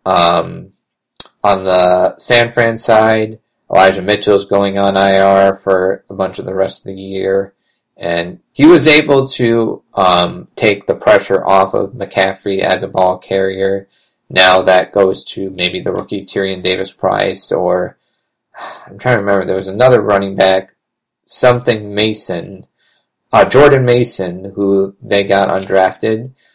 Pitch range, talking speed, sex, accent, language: 95-110 Hz, 145 wpm, male, American, English